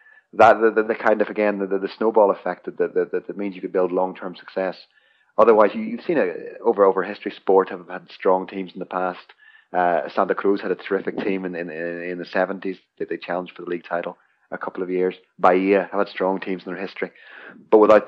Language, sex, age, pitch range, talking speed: English, male, 30-49, 90-105 Hz, 230 wpm